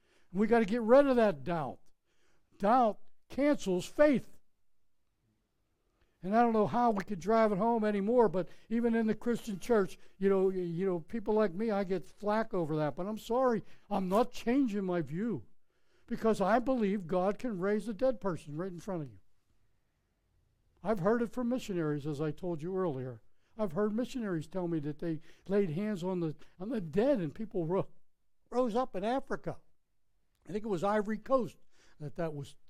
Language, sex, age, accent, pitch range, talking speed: English, male, 60-79, American, 165-235 Hz, 185 wpm